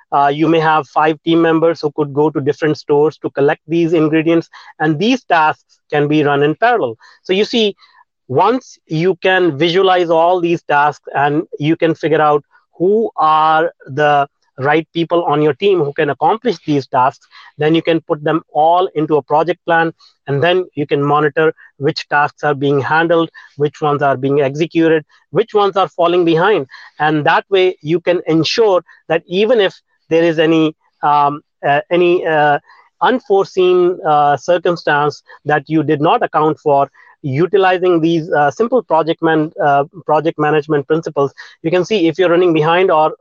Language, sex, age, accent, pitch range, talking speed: English, male, 30-49, Indian, 150-180 Hz, 175 wpm